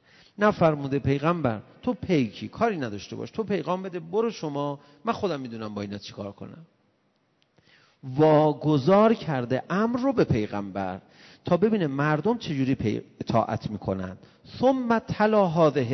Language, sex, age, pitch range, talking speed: Persian, male, 40-59, 115-175 Hz, 130 wpm